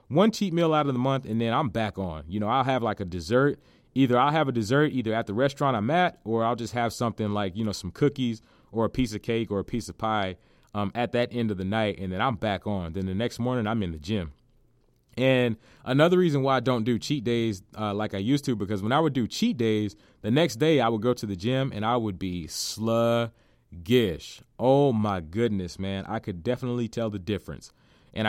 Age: 30-49